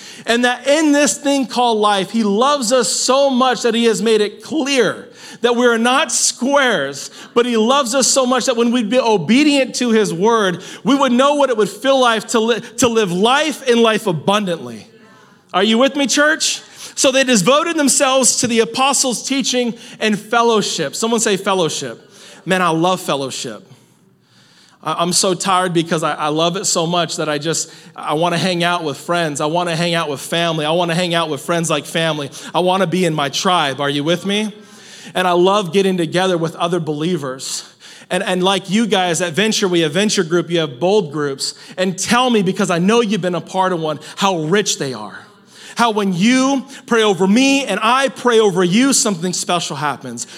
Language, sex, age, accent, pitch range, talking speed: English, male, 40-59, American, 175-245 Hz, 205 wpm